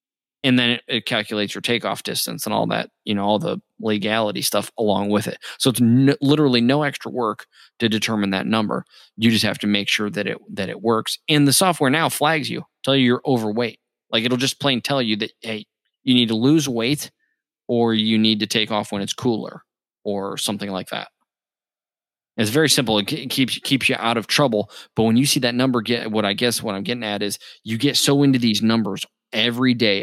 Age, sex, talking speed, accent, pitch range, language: 20-39, male, 220 wpm, American, 105-130 Hz, English